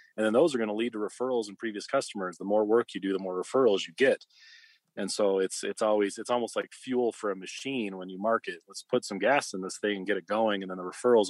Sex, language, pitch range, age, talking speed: male, English, 100-120 Hz, 30-49, 275 wpm